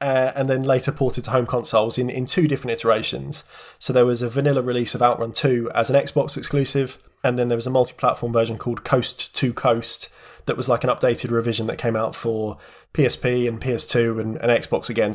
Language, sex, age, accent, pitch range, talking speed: English, male, 20-39, British, 115-130 Hz, 215 wpm